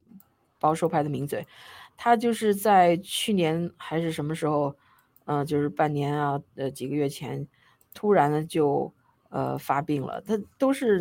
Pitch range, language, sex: 145-175 Hz, Chinese, female